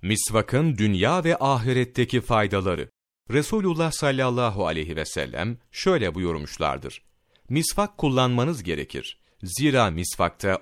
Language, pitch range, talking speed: Turkish, 100-135 Hz, 95 wpm